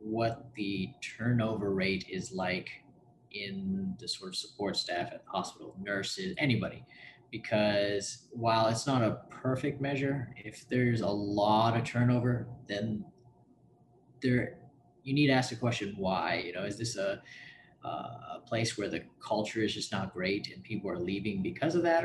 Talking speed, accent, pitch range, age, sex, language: 165 wpm, American, 105-125 Hz, 20-39, male, English